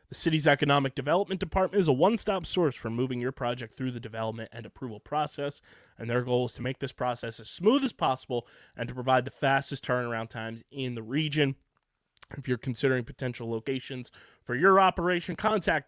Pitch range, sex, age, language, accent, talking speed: 115-140 Hz, male, 20-39, English, American, 190 wpm